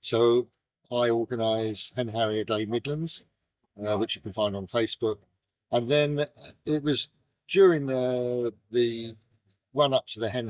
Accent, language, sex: British, English, male